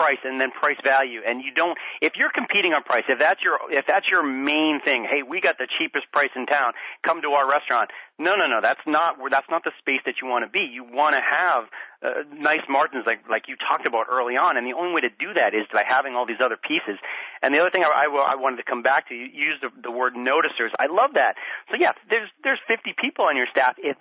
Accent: American